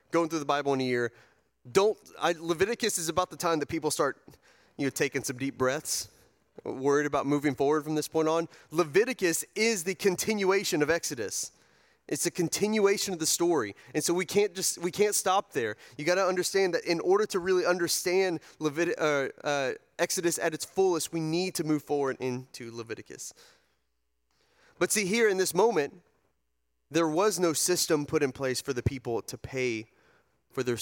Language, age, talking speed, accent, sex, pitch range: English, 30-49, 185 wpm, American, male, 110-170 Hz